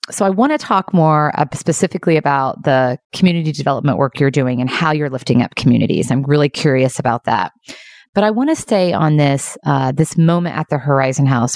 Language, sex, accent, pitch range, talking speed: English, female, American, 140-185 Hz, 200 wpm